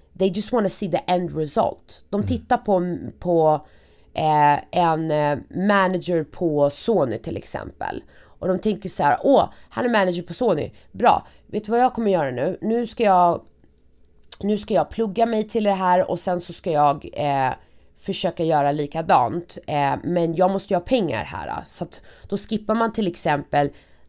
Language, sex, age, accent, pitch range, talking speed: Swedish, female, 30-49, native, 145-195 Hz, 185 wpm